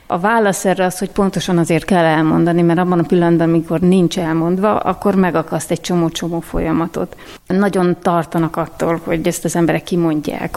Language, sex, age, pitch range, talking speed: Hungarian, female, 30-49, 165-180 Hz, 165 wpm